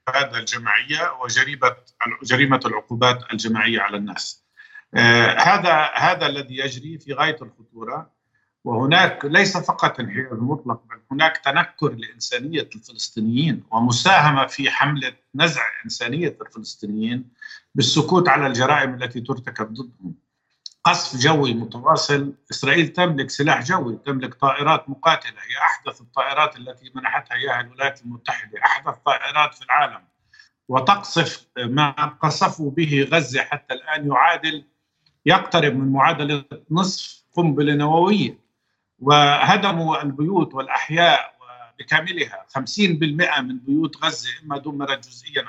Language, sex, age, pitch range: Arabic, male, 50-69, 125-160 Hz